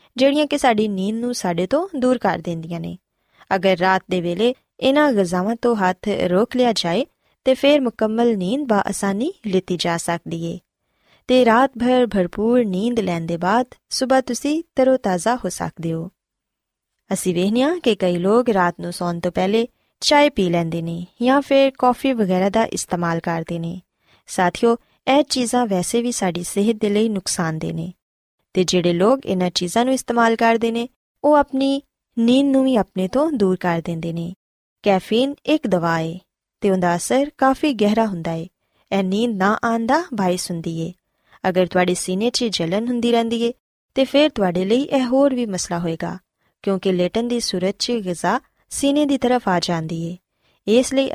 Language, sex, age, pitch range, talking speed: Punjabi, female, 20-39, 180-250 Hz, 175 wpm